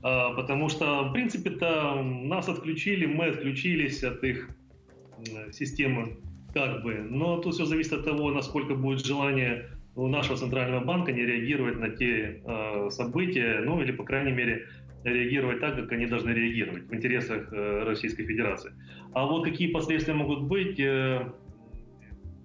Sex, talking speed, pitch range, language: male, 140 wpm, 125-160 Hz, Russian